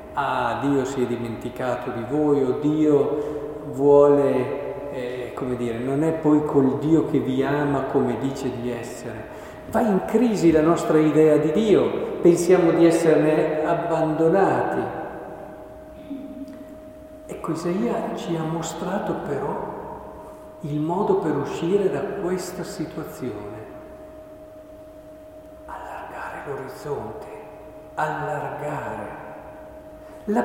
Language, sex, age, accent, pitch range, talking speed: Italian, male, 50-69, native, 145-225 Hz, 105 wpm